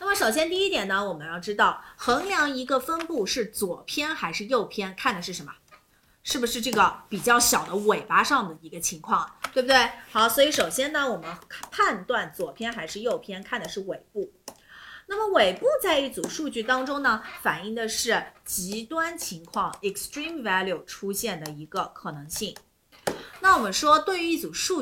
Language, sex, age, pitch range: Chinese, female, 30-49, 195-300 Hz